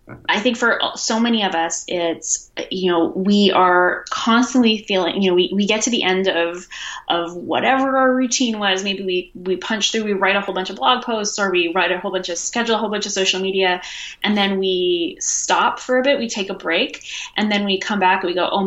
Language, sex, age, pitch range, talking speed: English, female, 20-39, 180-225 Hz, 240 wpm